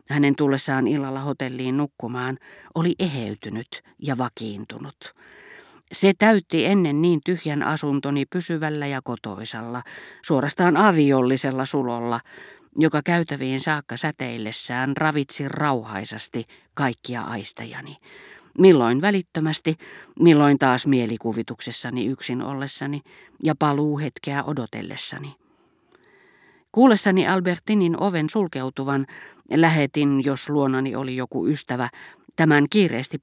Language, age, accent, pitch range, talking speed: Finnish, 40-59, native, 130-165 Hz, 95 wpm